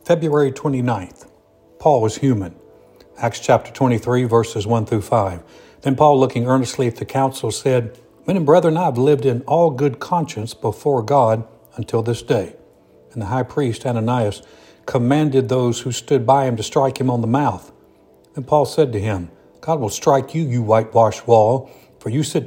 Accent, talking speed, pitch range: American, 180 wpm, 110-140 Hz